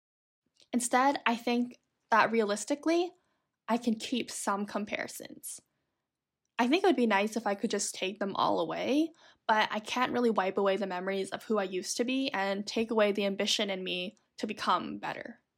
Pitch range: 205-250 Hz